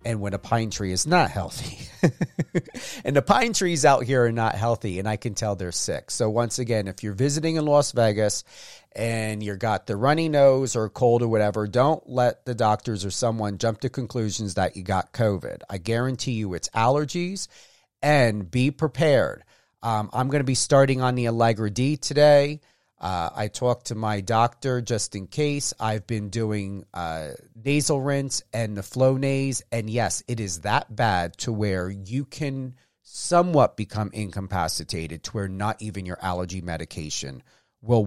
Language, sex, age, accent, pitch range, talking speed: English, male, 40-59, American, 100-130 Hz, 180 wpm